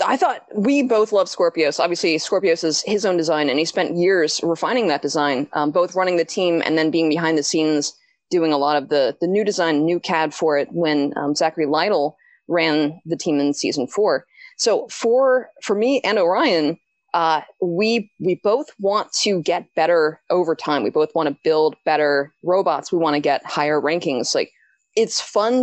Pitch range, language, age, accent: 155-220 Hz, English, 20-39, American